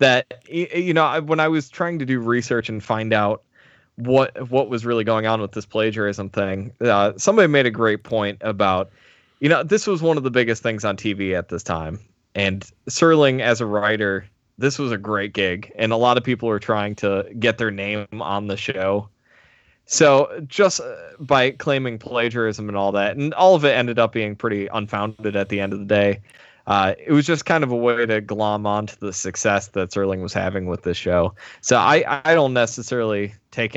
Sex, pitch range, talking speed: male, 100-120 Hz, 210 wpm